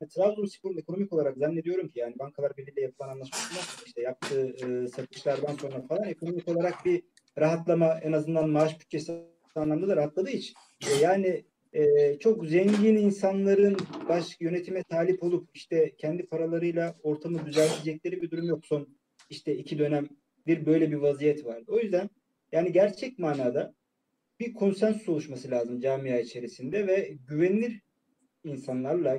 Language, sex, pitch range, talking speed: Turkish, male, 150-200 Hz, 145 wpm